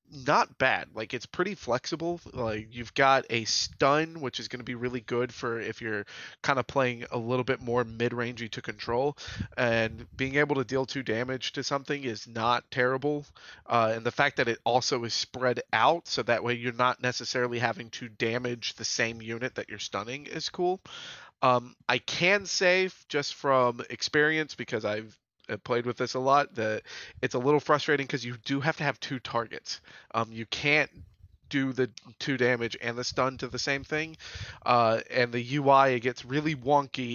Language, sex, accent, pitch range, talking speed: English, male, American, 120-140 Hz, 195 wpm